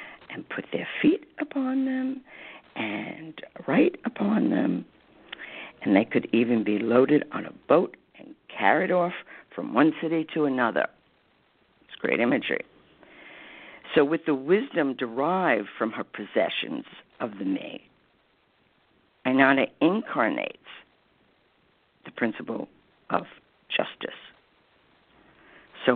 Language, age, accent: English, 60-79, American